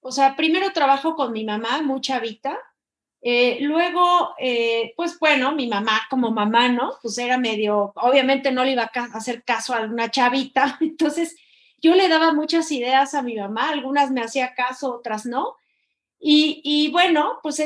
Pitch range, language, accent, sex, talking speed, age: 245-295 Hz, Spanish, Mexican, female, 175 wpm, 30-49